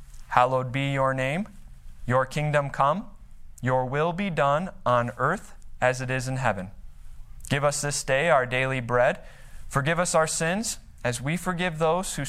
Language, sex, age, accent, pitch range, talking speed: English, male, 30-49, American, 110-155 Hz, 165 wpm